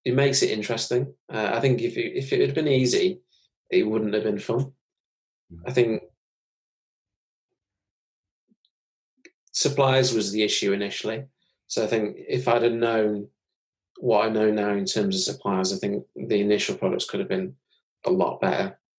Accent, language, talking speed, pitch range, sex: British, English, 160 wpm, 100-135 Hz, male